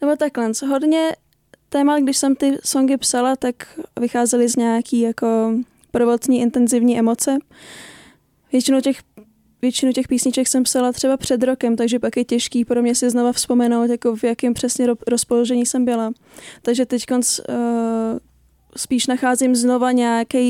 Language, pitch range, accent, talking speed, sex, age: Czech, 235-255 Hz, native, 145 wpm, female, 20-39